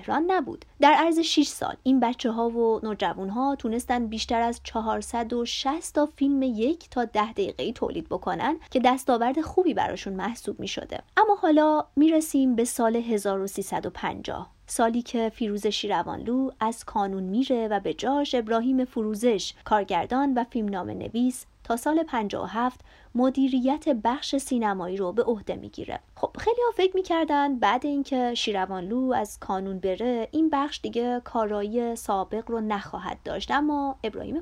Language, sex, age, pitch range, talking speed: Persian, female, 30-49, 225-280 Hz, 150 wpm